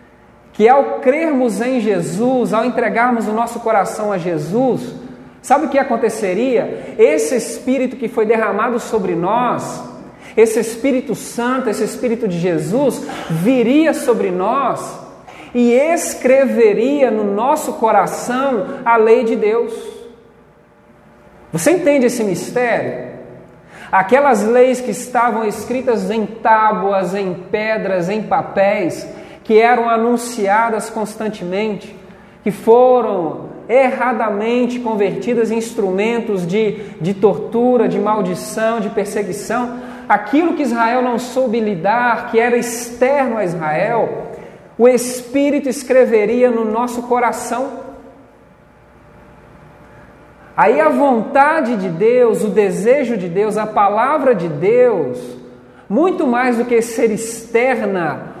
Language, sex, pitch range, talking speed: Portuguese, male, 215-250 Hz, 115 wpm